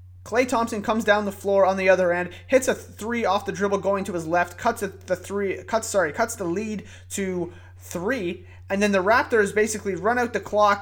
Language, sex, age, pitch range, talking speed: English, male, 30-49, 175-210 Hz, 215 wpm